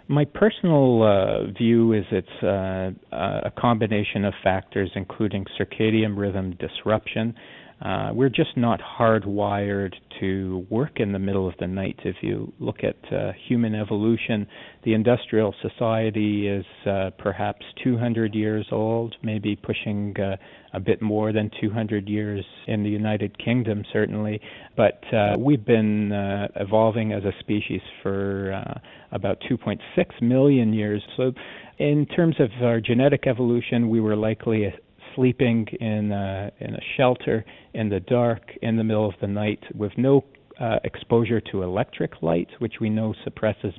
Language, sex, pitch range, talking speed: English, male, 100-115 Hz, 150 wpm